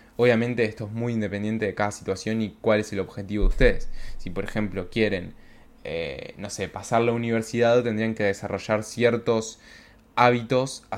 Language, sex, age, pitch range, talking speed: Spanish, male, 10-29, 100-120 Hz, 165 wpm